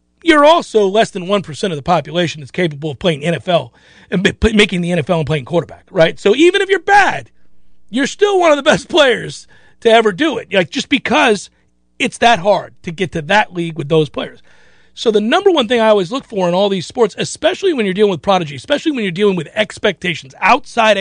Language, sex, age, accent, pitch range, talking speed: English, male, 40-59, American, 175-230 Hz, 220 wpm